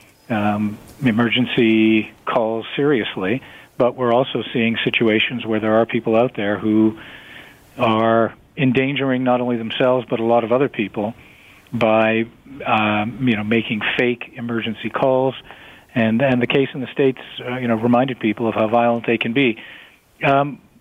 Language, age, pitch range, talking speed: English, 40-59, 110-125 Hz, 155 wpm